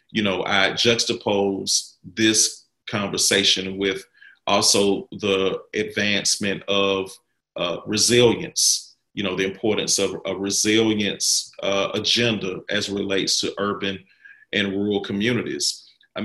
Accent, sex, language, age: American, male, English, 40-59